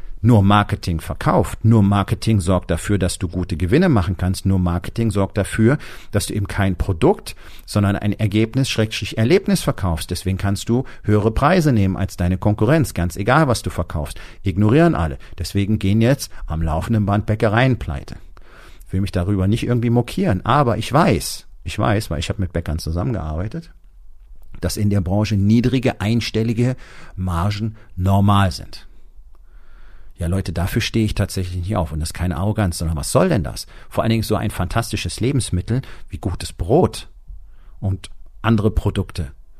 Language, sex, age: German, male, 50-69